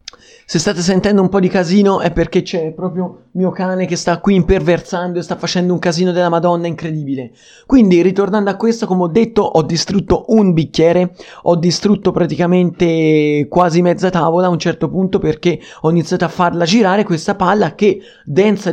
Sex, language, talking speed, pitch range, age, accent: male, Italian, 180 wpm, 165-200 Hz, 30-49, native